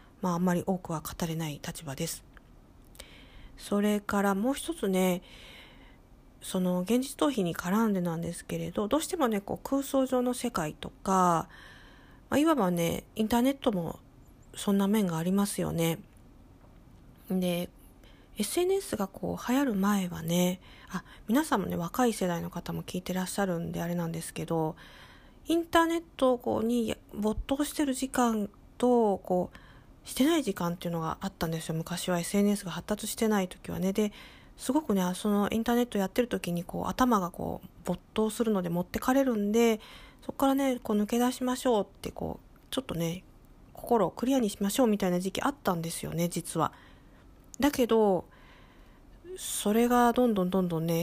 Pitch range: 175-240 Hz